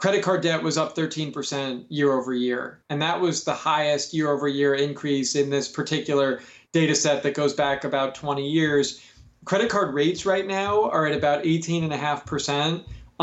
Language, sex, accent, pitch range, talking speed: English, male, American, 140-170 Hz, 170 wpm